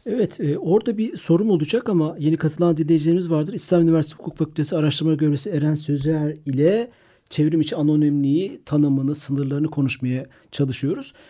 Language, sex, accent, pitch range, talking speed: Turkish, male, native, 140-170 Hz, 145 wpm